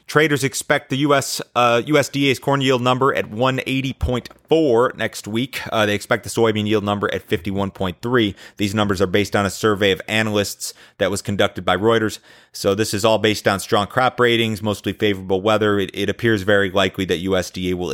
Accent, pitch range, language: American, 95-115 Hz, English